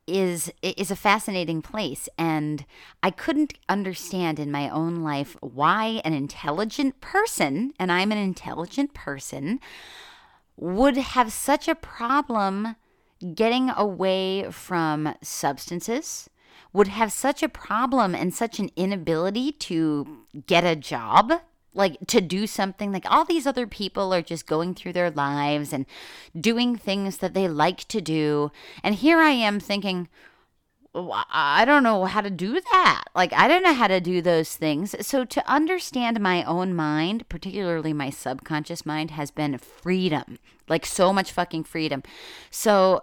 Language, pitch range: English, 160-225 Hz